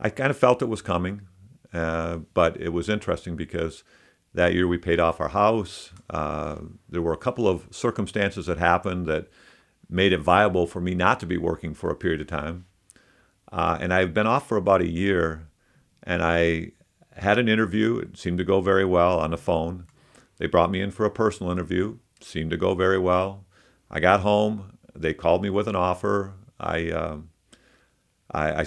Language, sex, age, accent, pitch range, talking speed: English, male, 50-69, American, 80-100 Hz, 195 wpm